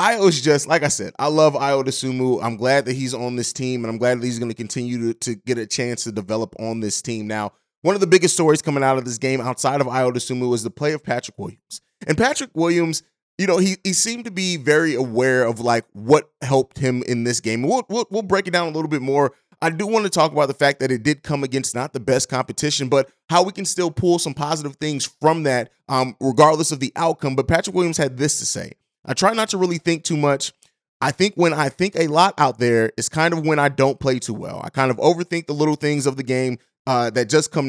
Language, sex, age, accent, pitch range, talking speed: English, male, 30-49, American, 125-160 Hz, 265 wpm